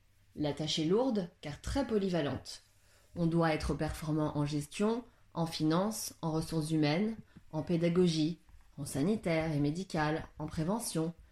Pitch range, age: 155-220 Hz, 20-39